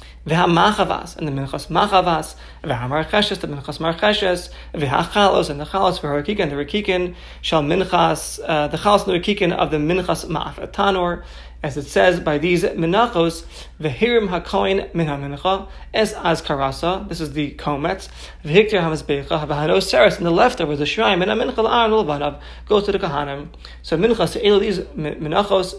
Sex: male